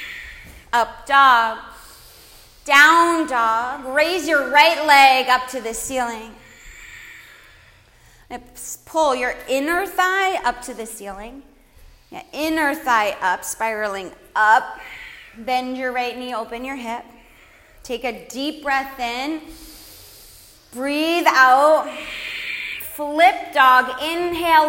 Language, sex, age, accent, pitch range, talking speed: English, female, 30-49, American, 235-310 Hz, 100 wpm